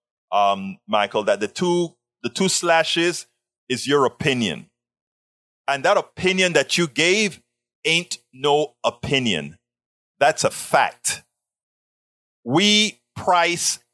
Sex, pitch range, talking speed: male, 130-185 Hz, 110 wpm